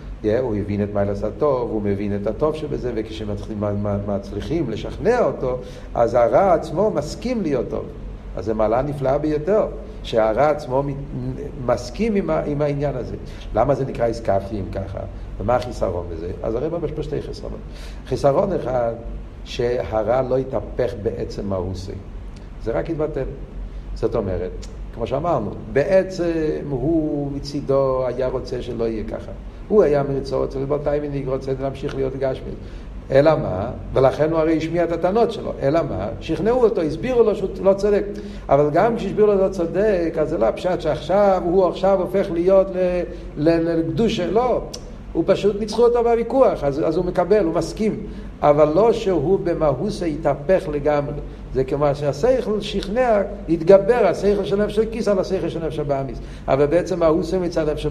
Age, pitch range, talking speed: 50-69, 120-175 Hz, 155 wpm